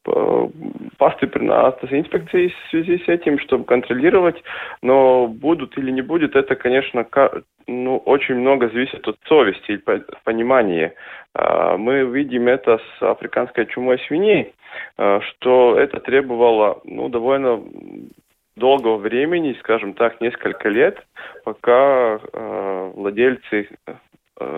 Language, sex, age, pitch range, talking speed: Russian, male, 20-39, 110-150 Hz, 105 wpm